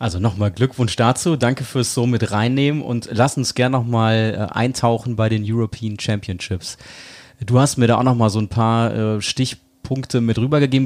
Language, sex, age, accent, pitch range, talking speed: German, male, 30-49, German, 115-140 Hz, 175 wpm